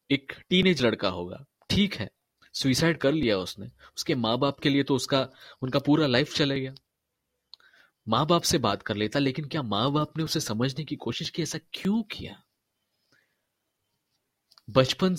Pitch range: 120-160 Hz